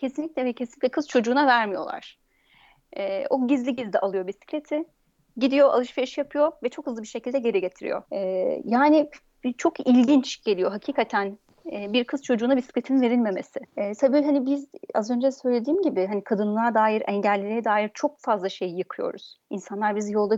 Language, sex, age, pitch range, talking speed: Turkish, female, 30-49, 210-275 Hz, 160 wpm